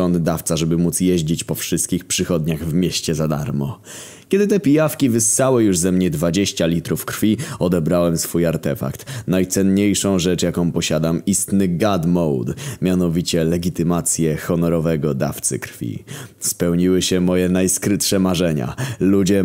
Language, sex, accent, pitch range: Polish, male, native, 85-95 Hz